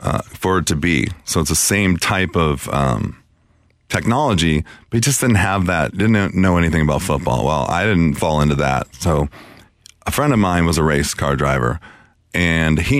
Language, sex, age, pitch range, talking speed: English, male, 30-49, 75-90 Hz, 195 wpm